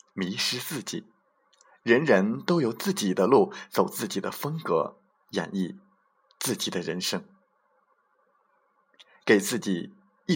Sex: male